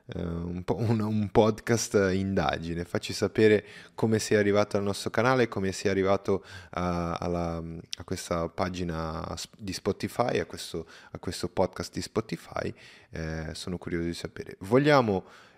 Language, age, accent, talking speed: Italian, 20-39, native, 145 wpm